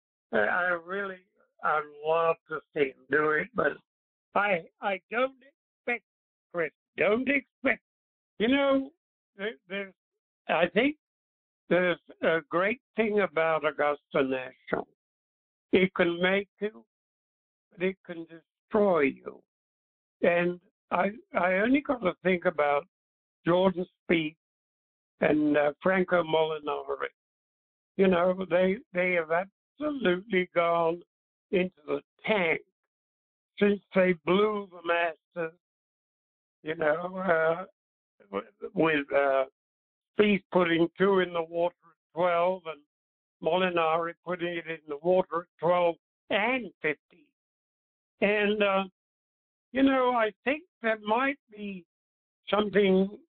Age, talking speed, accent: 60-79, 115 wpm, American